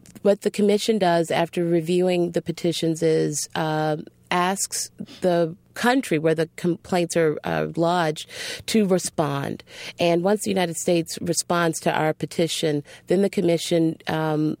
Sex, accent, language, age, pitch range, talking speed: female, American, English, 40-59, 155-180 Hz, 140 wpm